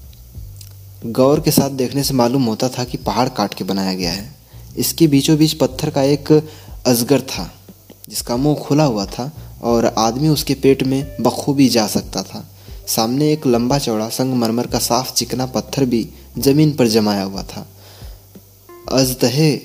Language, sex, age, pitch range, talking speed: Hindi, male, 20-39, 100-135 Hz, 160 wpm